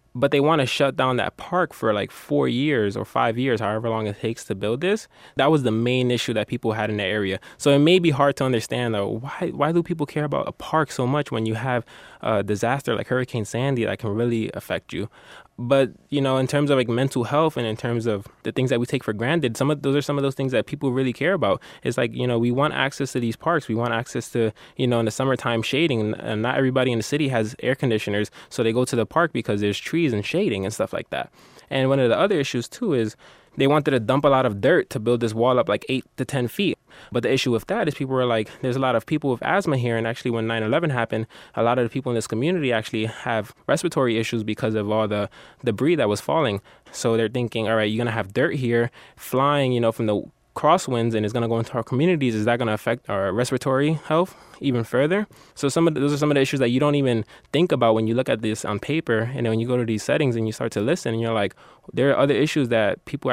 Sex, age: male, 20-39